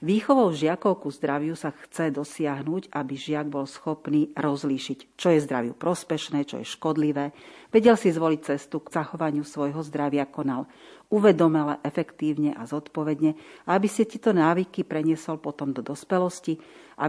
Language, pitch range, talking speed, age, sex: Slovak, 150-175 Hz, 145 wpm, 40-59, female